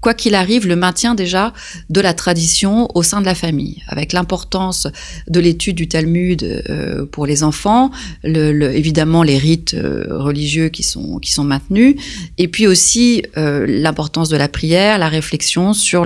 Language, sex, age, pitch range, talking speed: French, female, 30-49, 165-215 Hz, 170 wpm